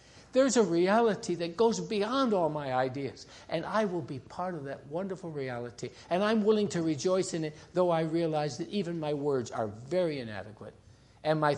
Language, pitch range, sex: English, 115-170 Hz, male